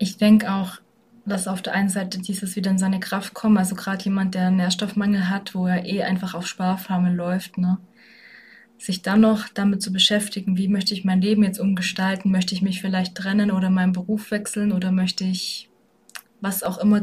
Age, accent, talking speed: 20-39, German, 195 wpm